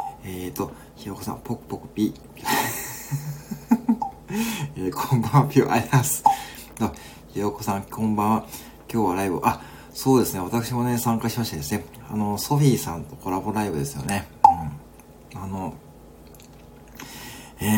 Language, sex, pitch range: Japanese, male, 95-130 Hz